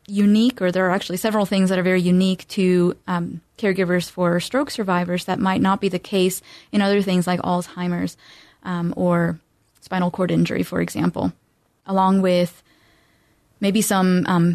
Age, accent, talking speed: 20-39, American, 165 wpm